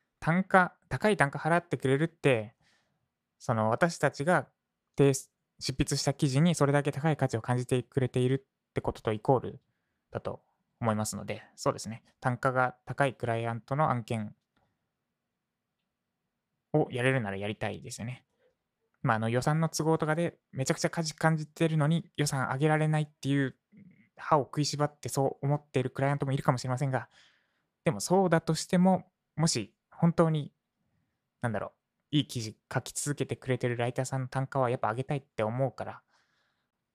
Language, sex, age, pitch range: Japanese, male, 20-39, 120-155 Hz